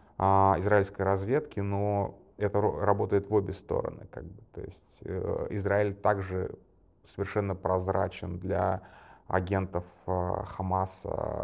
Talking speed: 110 wpm